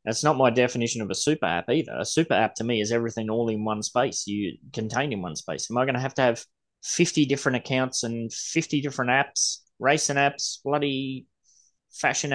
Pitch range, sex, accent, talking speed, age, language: 105-130 Hz, male, Australian, 210 wpm, 20-39, English